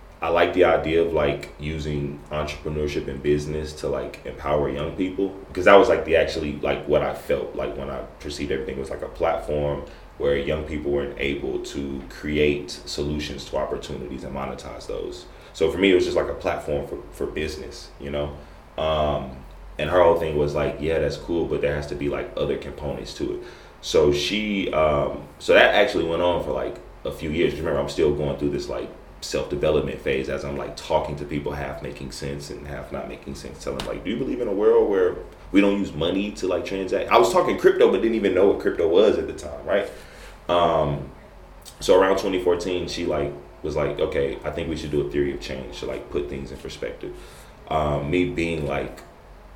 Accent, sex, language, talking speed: American, male, English, 215 wpm